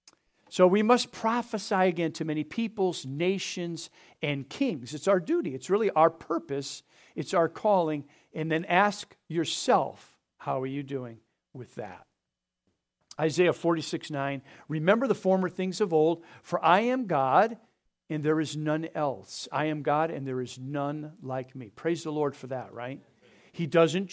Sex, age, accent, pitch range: male, 50-69, American, 150-185 Hz